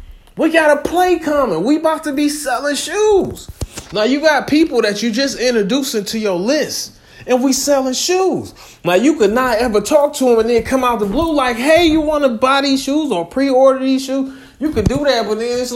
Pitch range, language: 245-280 Hz, English